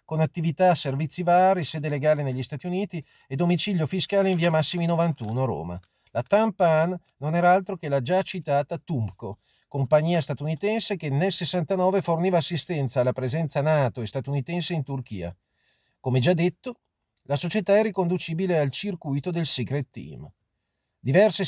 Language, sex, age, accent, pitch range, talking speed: Italian, male, 40-59, native, 135-185 Hz, 150 wpm